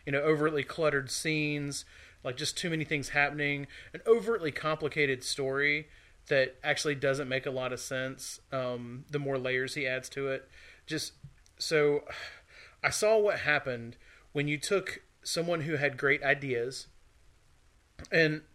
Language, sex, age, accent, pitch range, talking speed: English, male, 30-49, American, 130-150 Hz, 150 wpm